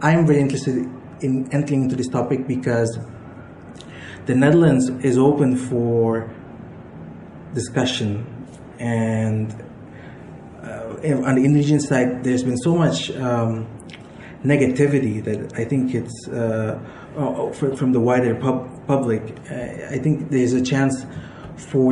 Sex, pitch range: male, 115-135 Hz